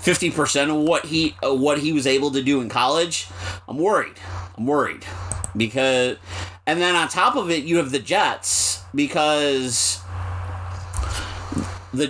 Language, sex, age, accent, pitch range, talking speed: English, male, 30-49, American, 95-135 Hz, 145 wpm